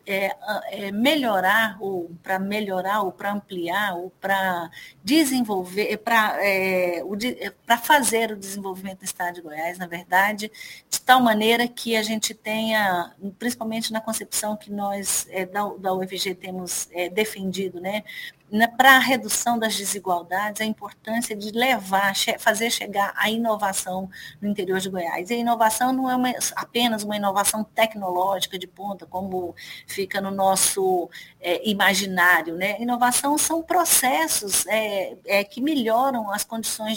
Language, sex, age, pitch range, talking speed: Portuguese, female, 40-59, 190-225 Hz, 130 wpm